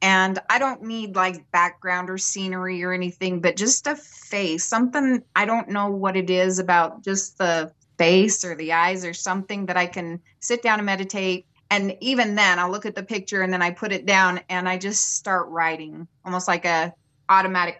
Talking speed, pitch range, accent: 200 wpm, 170-200 Hz, American